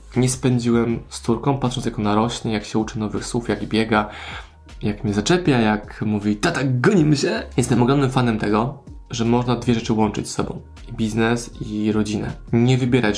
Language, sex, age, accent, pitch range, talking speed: Polish, male, 20-39, native, 105-125 Hz, 180 wpm